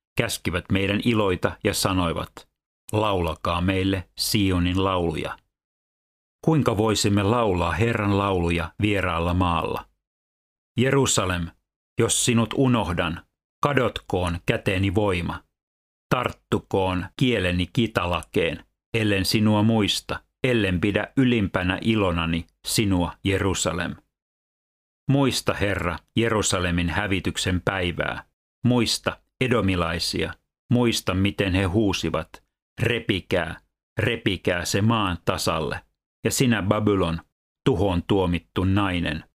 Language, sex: Finnish, male